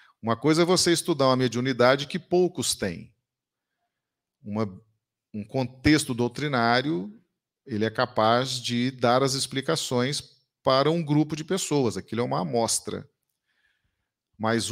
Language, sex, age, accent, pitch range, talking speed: Portuguese, male, 40-59, Brazilian, 110-140 Hz, 120 wpm